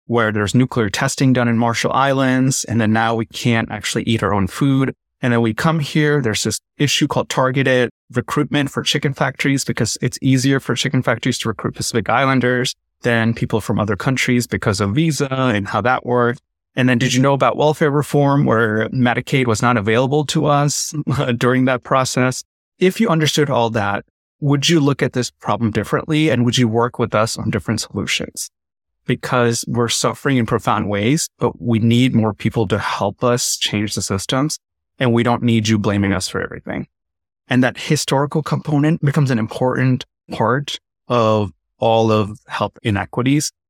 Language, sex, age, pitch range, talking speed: English, male, 30-49, 110-135 Hz, 180 wpm